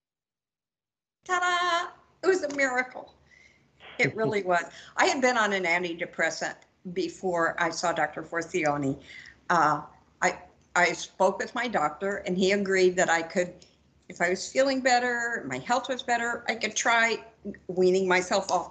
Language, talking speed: English, 150 wpm